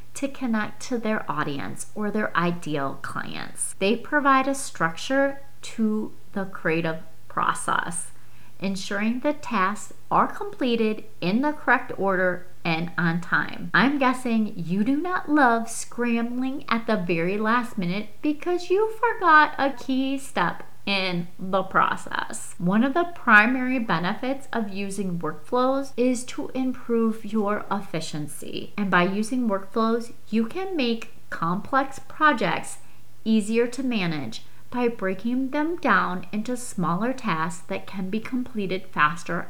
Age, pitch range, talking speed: 30-49, 185-255 Hz, 130 wpm